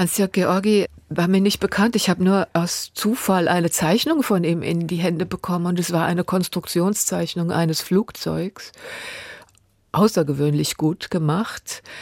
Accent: German